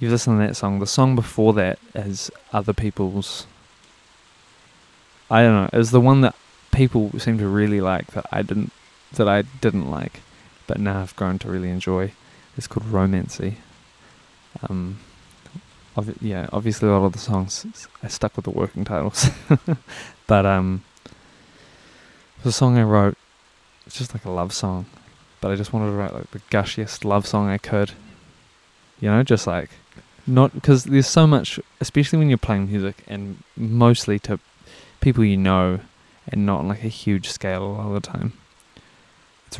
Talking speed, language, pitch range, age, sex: 170 wpm, English, 95-115 Hz, 20-39, male